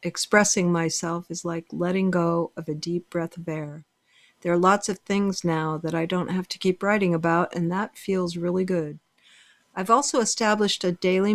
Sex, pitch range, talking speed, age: female, 165-200 Hz, 190 wpm, 50-69